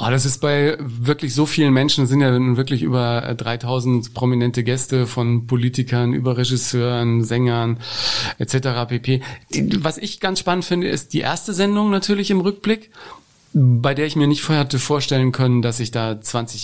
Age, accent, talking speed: 40-59, German, 180 wpm